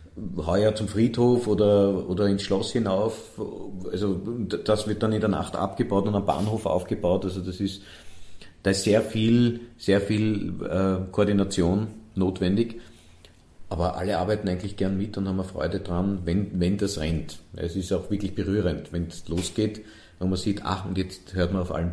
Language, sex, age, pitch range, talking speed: German, male, 50-69, 85-100 Hz, 175 wpm